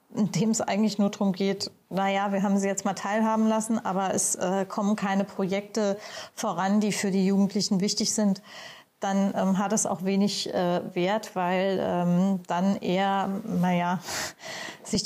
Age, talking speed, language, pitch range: 30-49, 165 wpm, German, 195-220 Hz